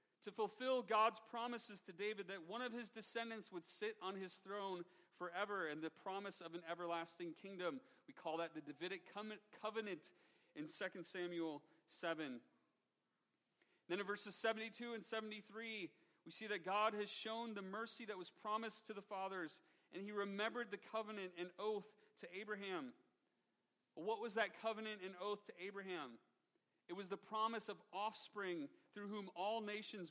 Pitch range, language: 180-225 Hz, English